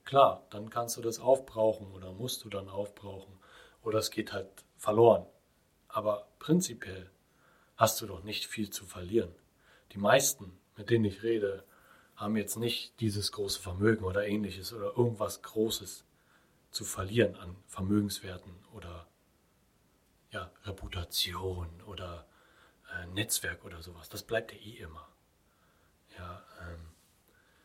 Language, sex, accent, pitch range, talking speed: German, male, German, 95-110 Hz, 130 wpm